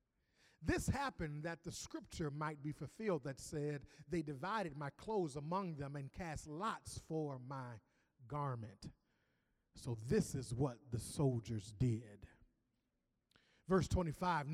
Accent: American